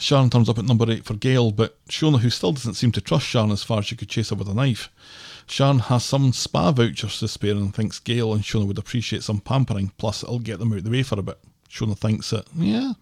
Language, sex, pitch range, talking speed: English, male, 105-130 Hz, 265 wpm